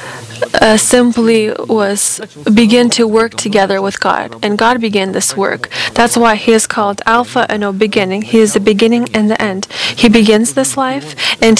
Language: English